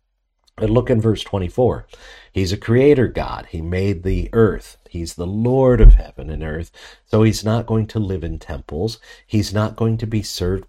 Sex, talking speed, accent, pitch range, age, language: male, 190 wpm, American, 80-100 Hz, 50-69, English